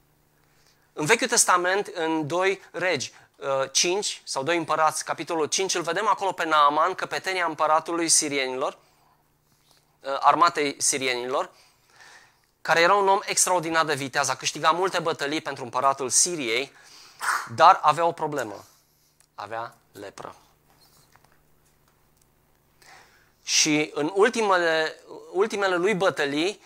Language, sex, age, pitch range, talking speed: Romanian, male, 20-39, 135-180 Hz, 110 wpm